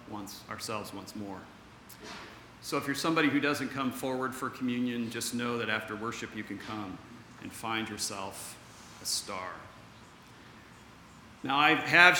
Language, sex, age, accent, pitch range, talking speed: English, male, 40-59, American, 125-175 Hz, 150 wpm